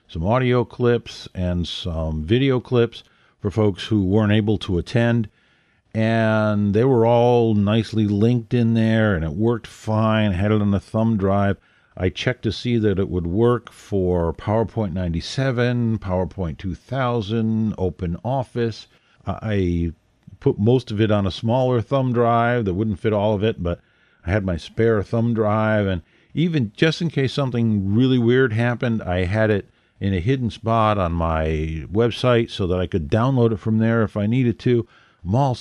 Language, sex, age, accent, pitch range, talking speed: English, male, 50-69, American, 95-120 Hz, 180 wpm